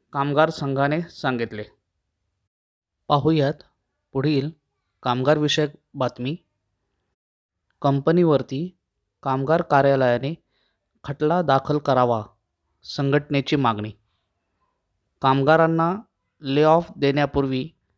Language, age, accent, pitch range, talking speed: Marathi, 20-39, native, 130-160 Hz, 60 wpm